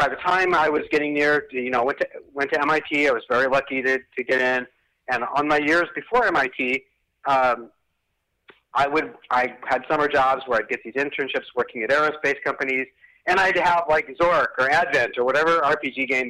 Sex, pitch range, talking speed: male, 130-175 Hz, 205 wpm